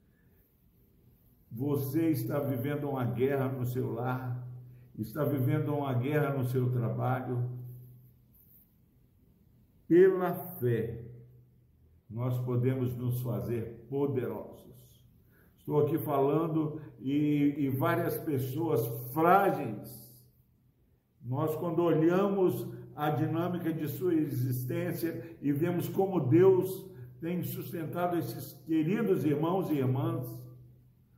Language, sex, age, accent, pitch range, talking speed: Portuguese, male, 60-79, Brazilian, 125-160 Hz, 95 wpm